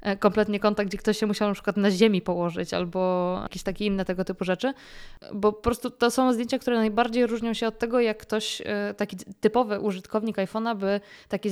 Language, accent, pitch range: Polish, native, 190-215 Hz